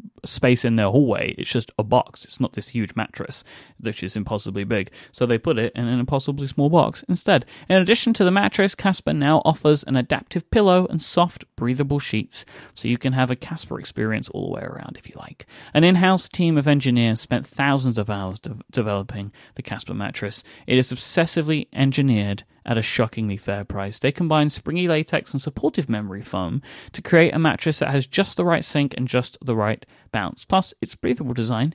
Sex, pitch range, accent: male, 120-160 Hz, British